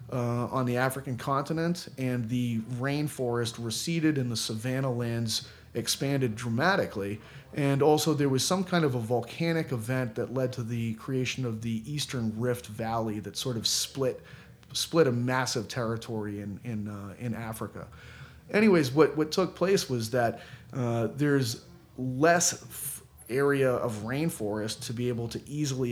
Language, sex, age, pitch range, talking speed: English, male, 30-49, 115-140 Hz, 155 wpm